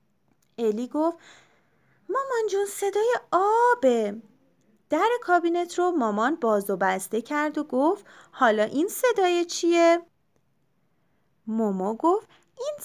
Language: Persian